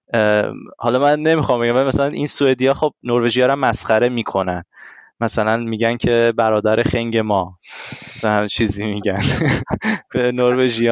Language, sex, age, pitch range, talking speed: Persian, male, 20-39, 110-135 Hz, 130 wpm